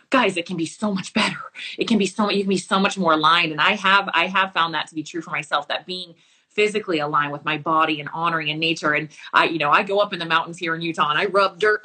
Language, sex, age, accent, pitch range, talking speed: English, female, 20-39, American, 165-225 Hz, 295 wpm